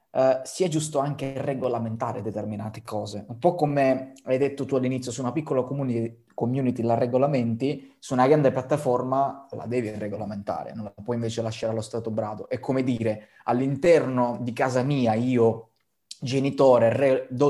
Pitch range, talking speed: 110-130 Hz, 155 wpm